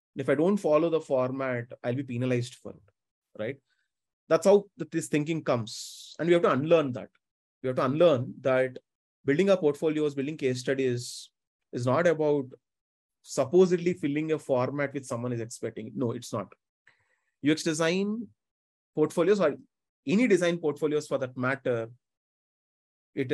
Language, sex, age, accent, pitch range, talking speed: English, male, 30-49, Indian, 130-165 Hz, 150 wpm